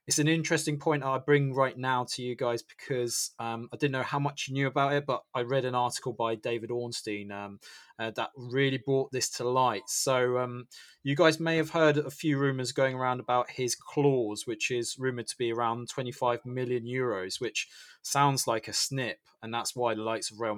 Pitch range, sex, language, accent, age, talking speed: 115-140 Hz, male, English, British, 20-39, 215 wpm